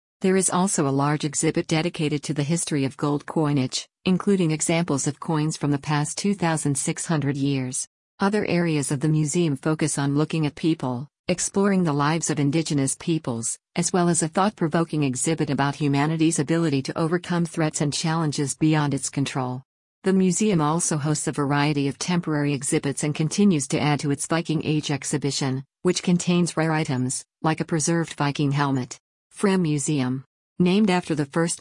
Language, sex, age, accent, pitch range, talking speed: English, female, 50-69, American, 140-170 Hz, 165 wpm